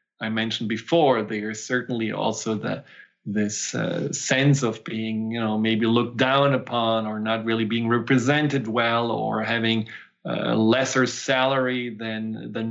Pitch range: 115-145 Hz